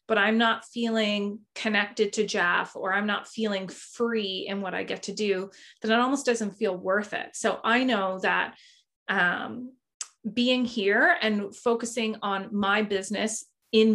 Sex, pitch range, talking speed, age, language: female, 200-250 Hz, 165 wpm, 20-39, English